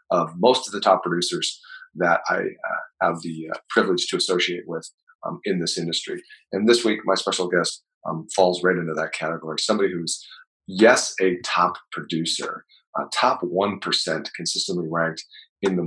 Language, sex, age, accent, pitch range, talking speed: English, male, 40-59, American, 80-100 Hz, 170 wpm